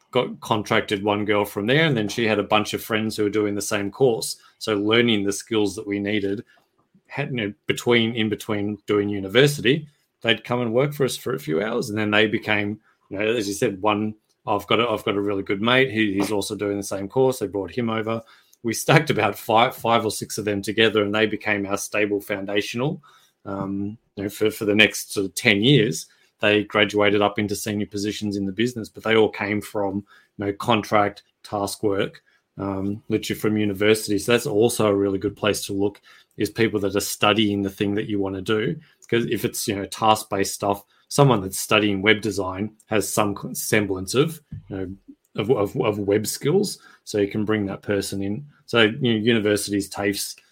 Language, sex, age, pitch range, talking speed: English, male, 20-39, 100-110 Hz, 215 wpm